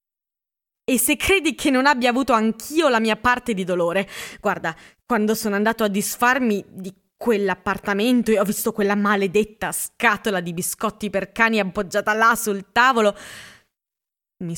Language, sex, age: Italian, female, 20-39